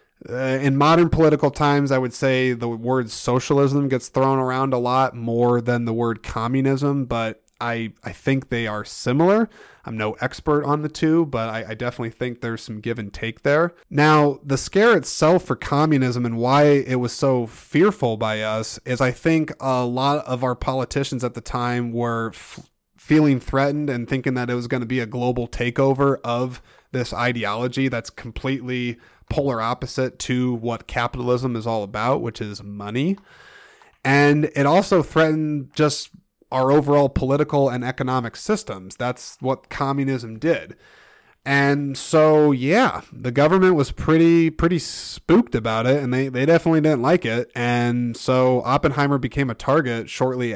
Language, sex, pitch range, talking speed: English, male, 120-140 Hz, 165 wpm